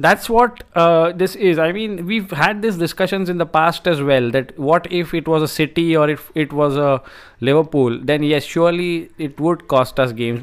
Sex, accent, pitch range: male, Indian, 135-170 Hz